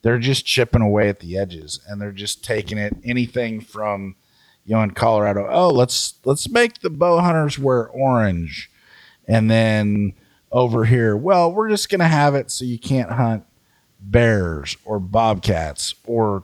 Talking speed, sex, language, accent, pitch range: 170 wpm, male, English, American, 100-120 Hz